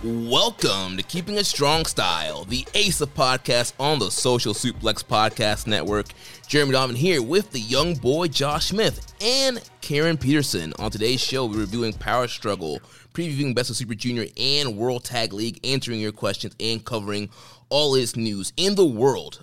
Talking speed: 170 wpm